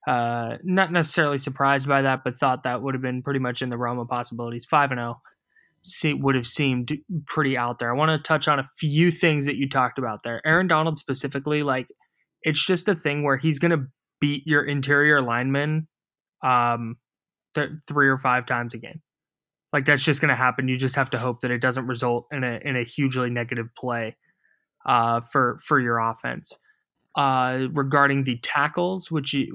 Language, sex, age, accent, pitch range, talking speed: English, male, 20-39, American, 125-155 Hz, 195 wpm